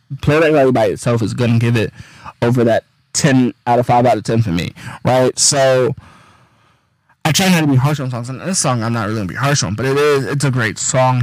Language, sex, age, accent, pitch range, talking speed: English, male, 20-39, American, 120-145 Hz, 240 wpm